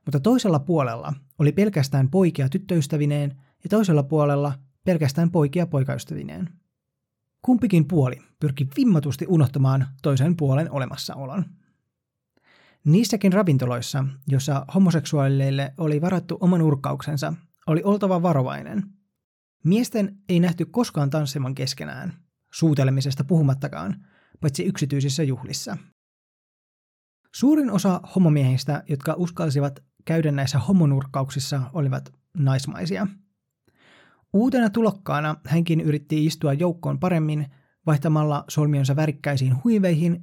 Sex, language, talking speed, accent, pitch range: male, Finnish, 95 wpm, native, 140-180 Hz